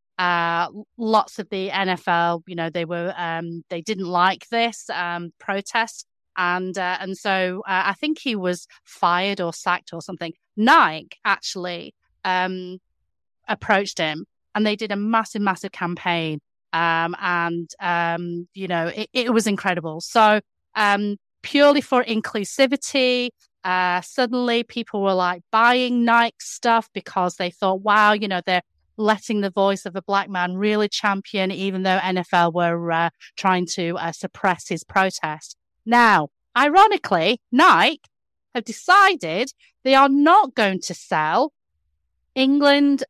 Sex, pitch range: female, 180-250 Hz